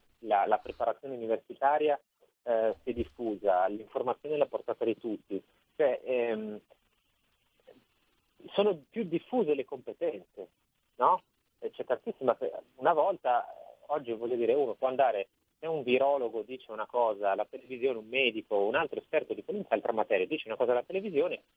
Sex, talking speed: male, 150 wpm